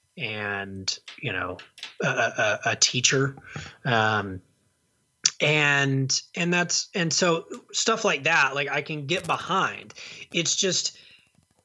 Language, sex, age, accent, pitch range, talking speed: English, male, 30-49, American, 125-160 Hz, 120 wpm